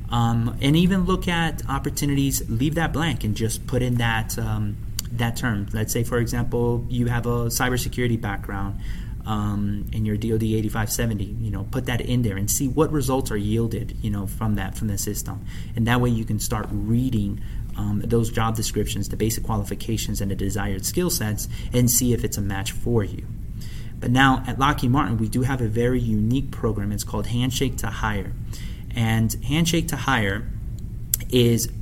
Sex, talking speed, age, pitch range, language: male, 185 wpm, 30-49, 105-125 Hz, English